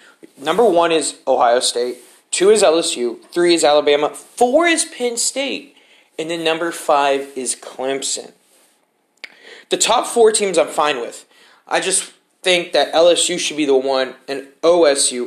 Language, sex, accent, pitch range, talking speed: English, male, American, 135-170 Hz, 155 wpm